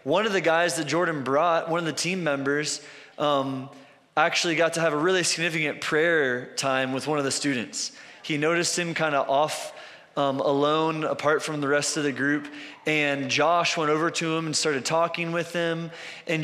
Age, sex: 20-39, male